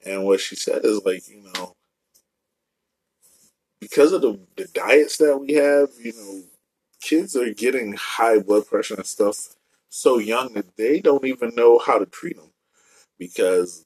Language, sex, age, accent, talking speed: English, male, 30-49, American, 165 wpm